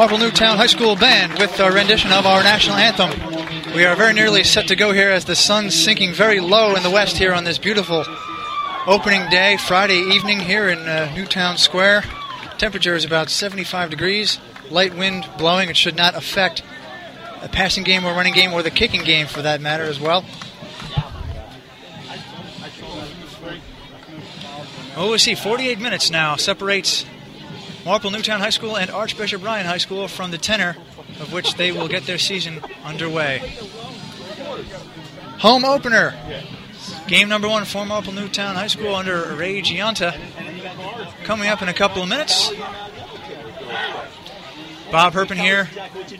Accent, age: American, 30-49